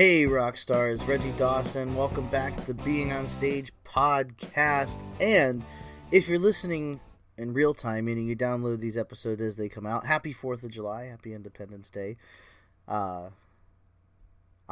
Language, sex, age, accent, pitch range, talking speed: English, male, 30-49, American, 110-140 Hz, 145 wpm